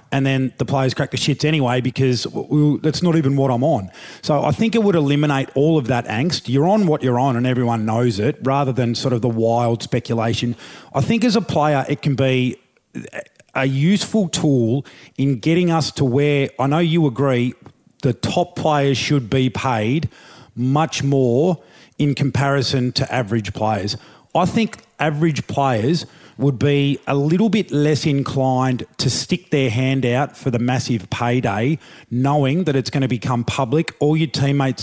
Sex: male